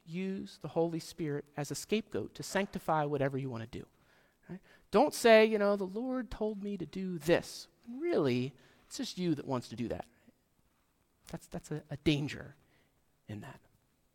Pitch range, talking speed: 145-205 Hz, 180 wpm